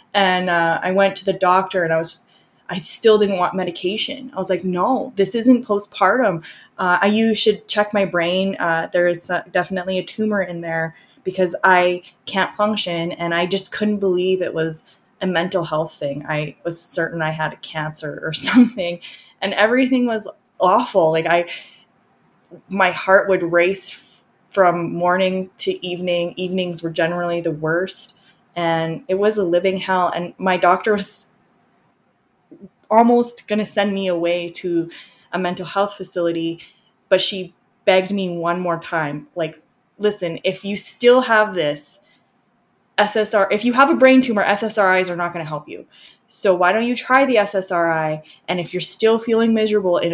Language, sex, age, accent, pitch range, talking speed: English, female, 20-39, American, 170-200 Hz, 170 wpm